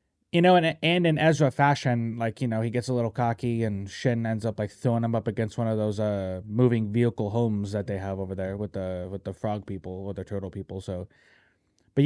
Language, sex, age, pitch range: English, male, 20-39, 110-145 Hz